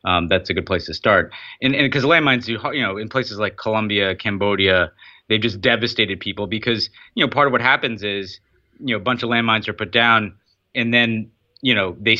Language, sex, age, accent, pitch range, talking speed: English, male, 30-49, American, 95-120 Hz, 215 wpm